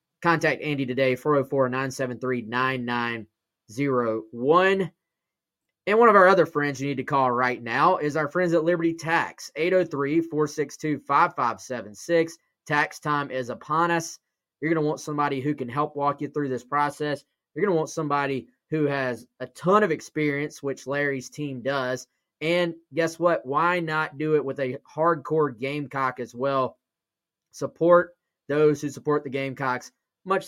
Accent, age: American, 20-39